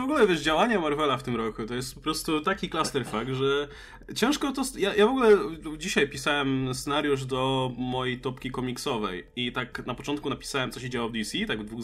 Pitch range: 130-195 Hz